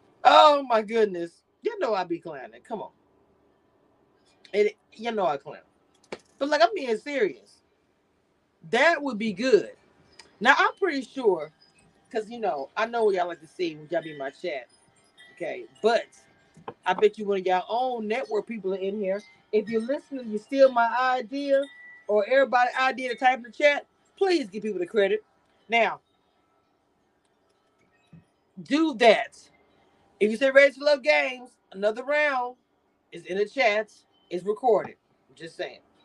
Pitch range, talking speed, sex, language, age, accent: 190-275 Hz, 165 wpm, female, English, 40-59, American